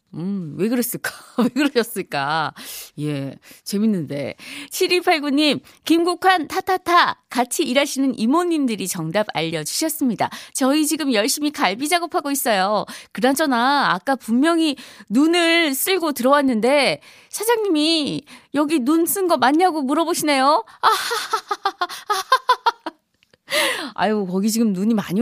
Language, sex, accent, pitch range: Korean, female, native, 215-320 Hz